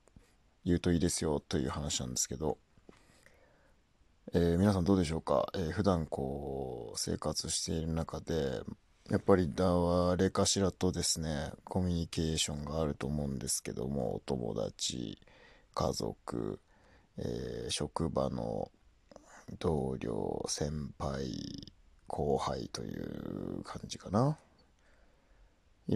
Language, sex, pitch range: Japanese, male, 75-100 Hz